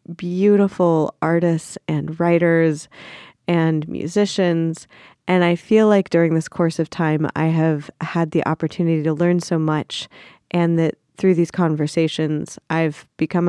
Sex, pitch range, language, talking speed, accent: female, 160-190 Hz, English, 140 wpm, American